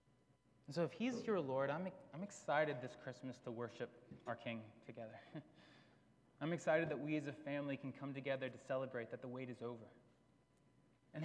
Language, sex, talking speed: English, male, 180 wpm